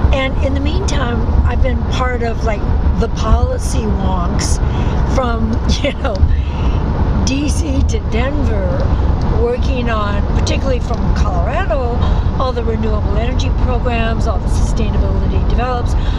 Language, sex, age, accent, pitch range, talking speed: English, female, 60-79, American, 75-85 Hz, 120 wpm